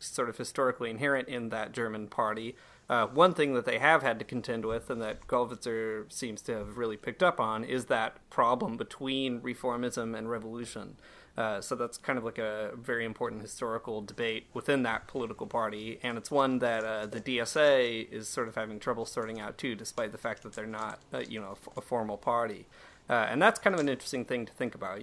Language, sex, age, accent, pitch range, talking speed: English, male, 30-49, American, 110-130 Hz, 215 wpm